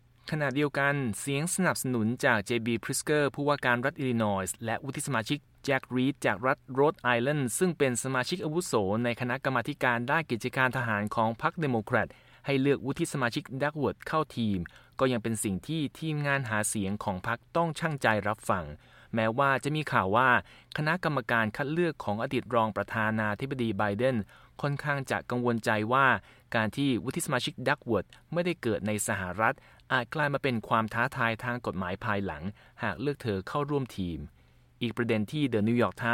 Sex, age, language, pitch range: male, 20-39, Thai, 110-140 Hz